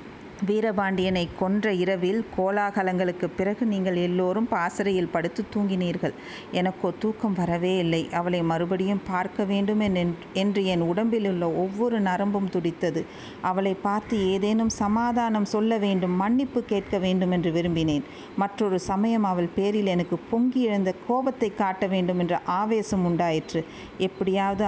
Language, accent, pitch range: Tamil, native, 180-215 Hz